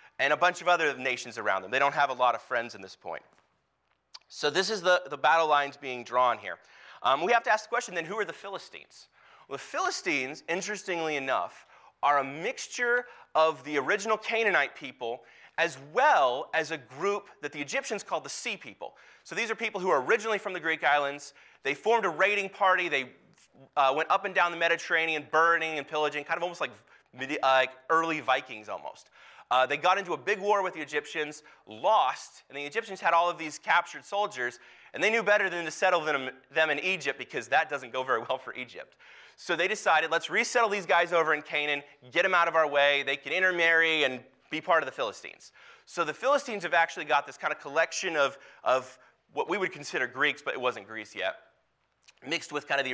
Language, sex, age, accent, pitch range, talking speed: English, male, 30-49, American, 145-195 Hz, 215 wpm